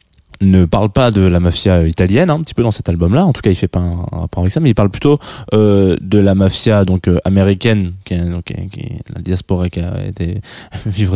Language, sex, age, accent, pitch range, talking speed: French, male, 20-39, French, 90-115 Hz, 250 wpm